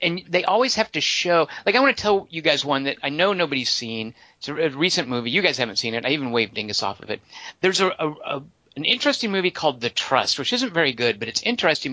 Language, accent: English, American